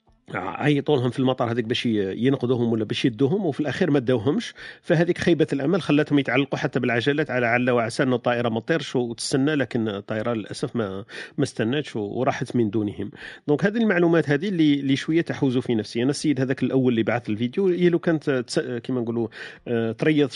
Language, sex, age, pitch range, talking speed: Arabic, male, 40-59, 115-140 Hz, 170 wpm